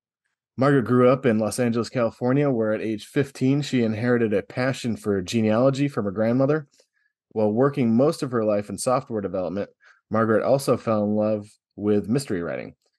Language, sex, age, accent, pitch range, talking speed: English, male, 20-39, American, 110-135 Hz, 170 wpm